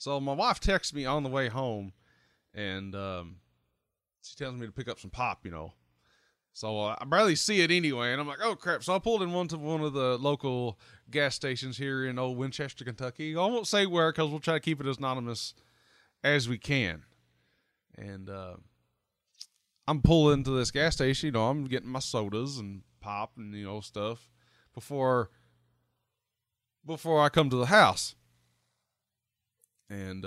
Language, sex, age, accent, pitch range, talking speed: English, male, 30-49, American, 105-155 Hz, 180 wpm